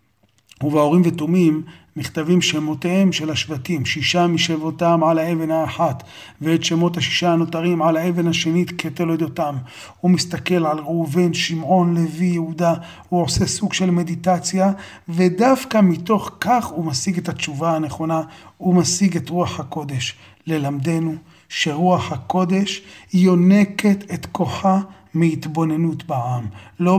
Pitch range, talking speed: 150-180 Hz, 120 wpm